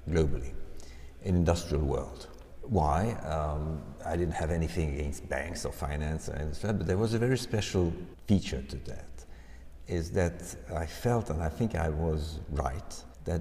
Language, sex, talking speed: English, male, 155 wpm